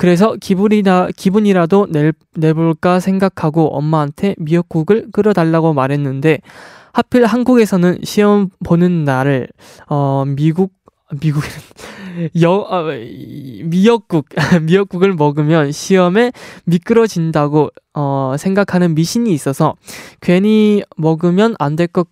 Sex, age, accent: male, 20-39, native